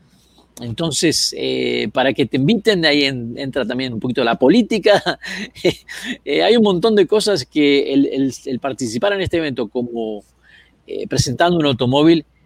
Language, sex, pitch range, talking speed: Spanish, male, 120-170 Hz, 165 wpm